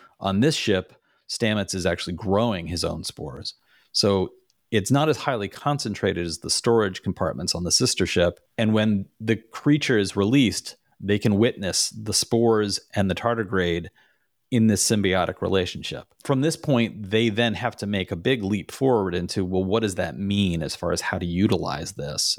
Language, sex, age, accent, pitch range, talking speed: English, male, 30-49, American, 90-110 Hz, 180 wpm